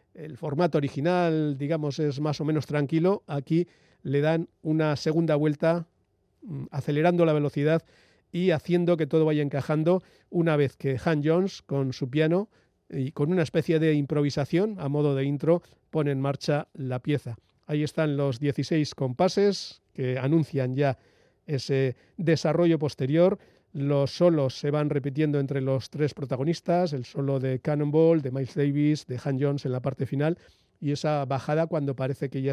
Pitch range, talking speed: 140-165 Hz, 160 wpm